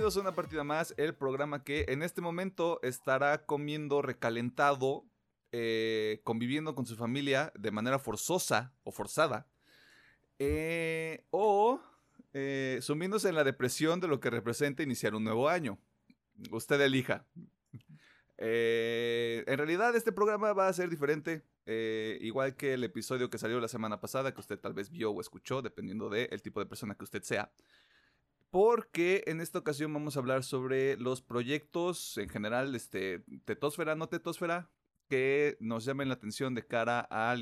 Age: 30-49